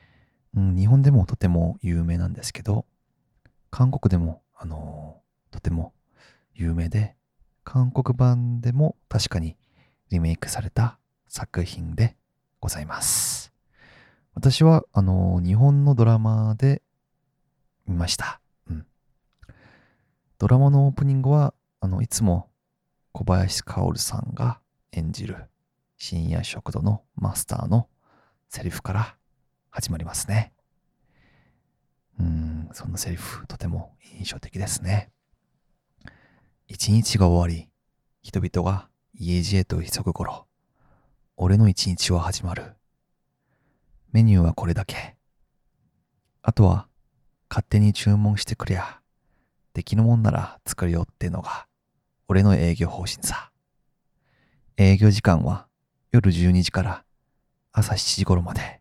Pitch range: 90-120 Hz